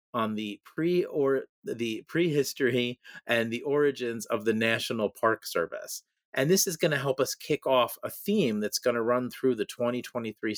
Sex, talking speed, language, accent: male, 180 wpm, English, American